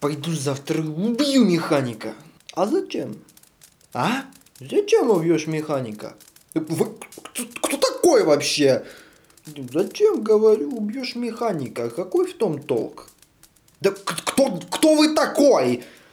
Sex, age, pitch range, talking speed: male, 20-39, 155-245 Hz, 105 wpm